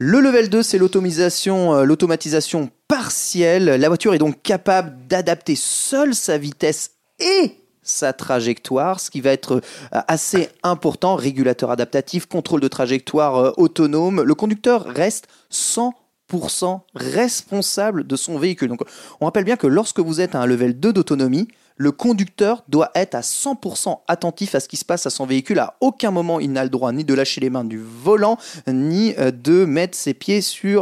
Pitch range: 130-195 Hz